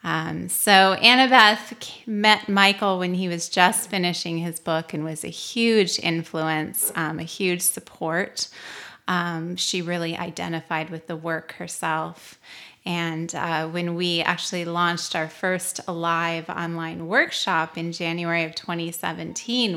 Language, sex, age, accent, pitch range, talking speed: English, female, 30-49, American, 165-195 Hz, 135 wpm